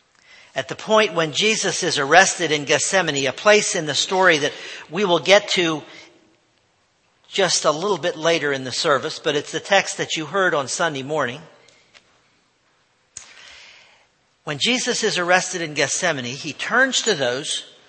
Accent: American